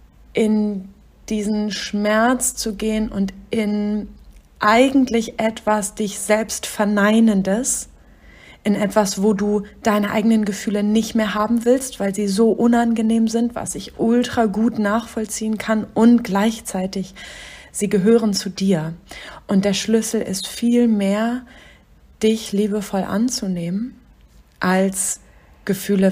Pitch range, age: 195-225 Hz, 30-49